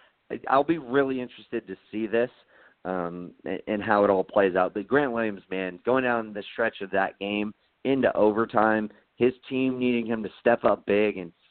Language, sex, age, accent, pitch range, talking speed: English, male, 40-59, American, 95-125 Hz, 195 wpm